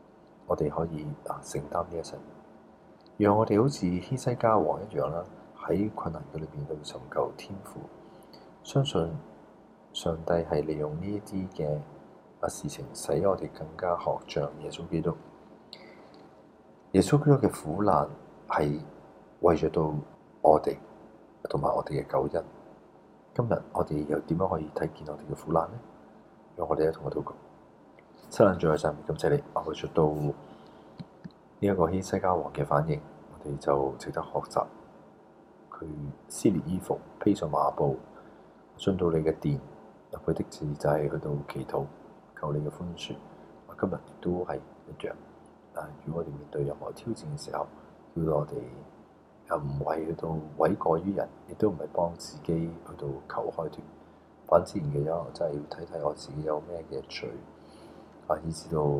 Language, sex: Chinese, male